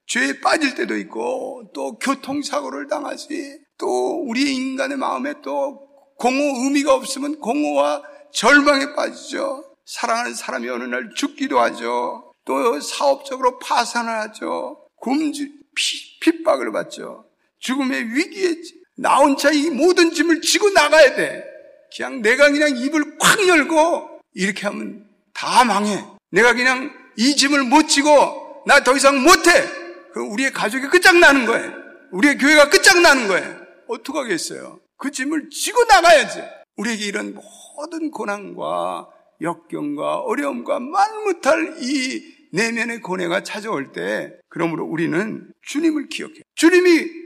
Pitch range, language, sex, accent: 255-320 Hz, Korean, male, native